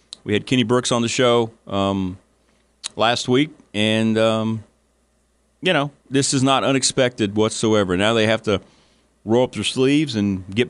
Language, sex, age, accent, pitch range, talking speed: English, male, 40-59, American, 95-135 Hz, 165 wpm